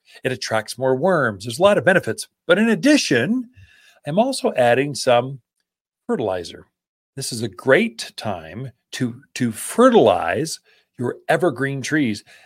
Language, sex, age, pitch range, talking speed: English, male, 40-59, 120-175 Hz, 135 wpm